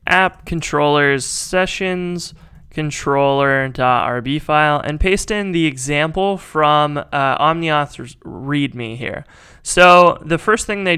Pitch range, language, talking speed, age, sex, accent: 135-160 Hz, English, 85 wpm, 20-39, male, American